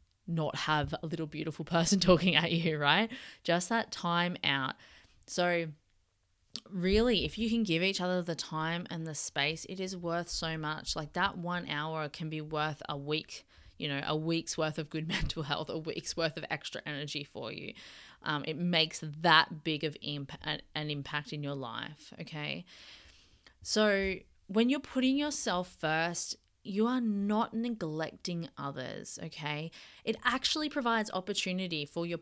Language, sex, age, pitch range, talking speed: English, female, 20-39, 155-190 Hz, 165 wpm